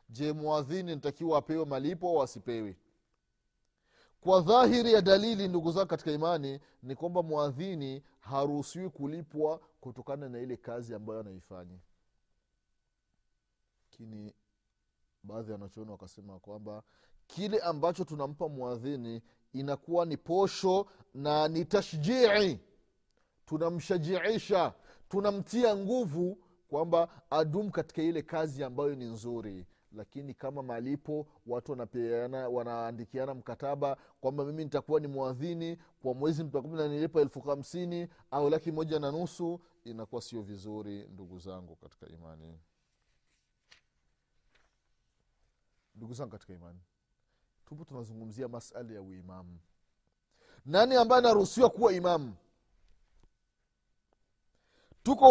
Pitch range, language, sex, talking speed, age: 115-175 Hz, Swahili, male, 100 wpm, 30-49